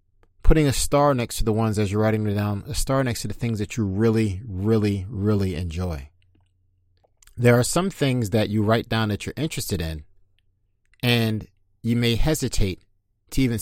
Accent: American